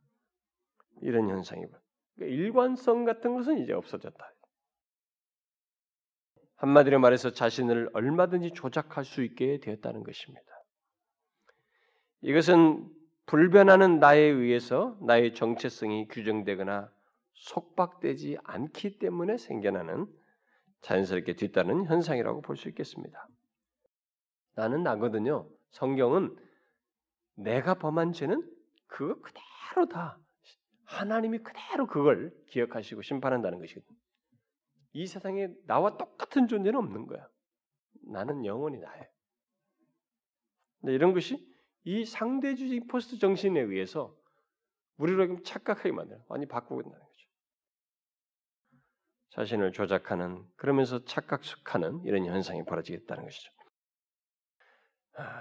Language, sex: Korean, male